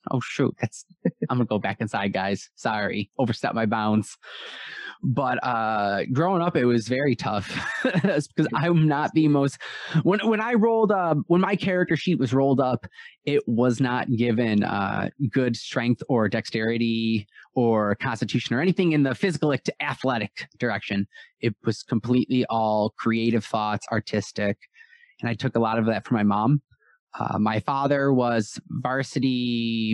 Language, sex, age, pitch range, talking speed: English, male, 20-39, 115-150 Hz, 165 wpm